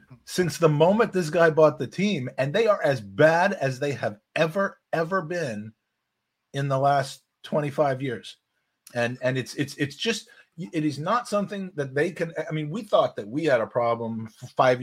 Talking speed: 195 wpm